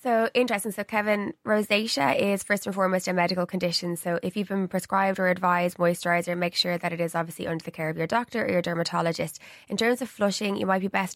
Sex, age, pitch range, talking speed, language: female, 20-39, 180-205 Hz, 230 wpm, English